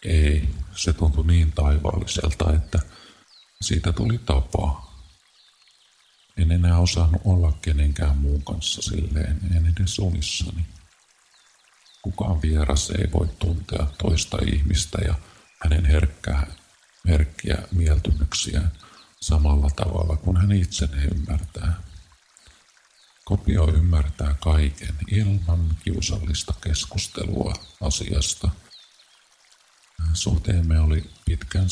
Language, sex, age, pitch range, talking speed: Finnish, male, 50-69, 75-90 Hz, 90 wpm